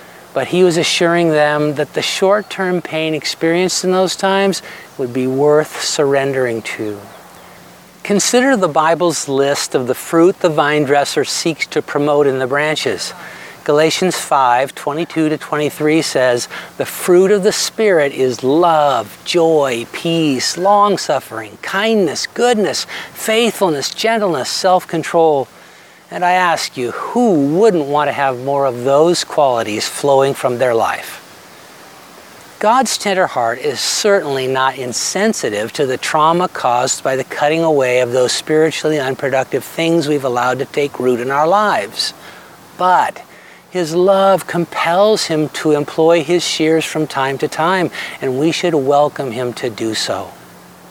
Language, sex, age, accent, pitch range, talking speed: English, male, 50-69, American, 135-180 Hz, 140 wpm